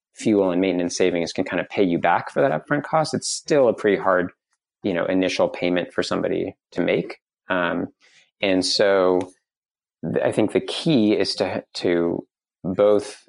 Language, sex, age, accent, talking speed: English, male, 30-49, American, 170 wpm